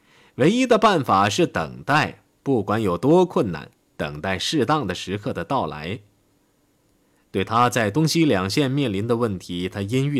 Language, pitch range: Chinese, 100-165 Hz